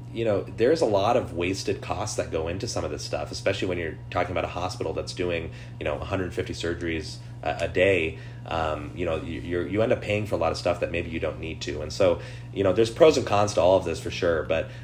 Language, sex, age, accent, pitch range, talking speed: English, male, 30-49, American, 80-115 Hz, 260 wpm